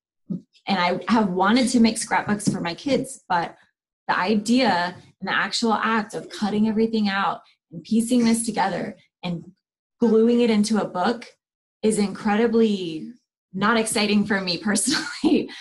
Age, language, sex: 20-39, English, female